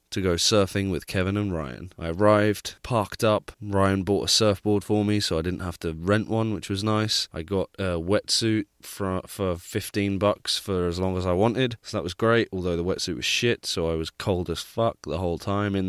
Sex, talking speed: male, 225 wpm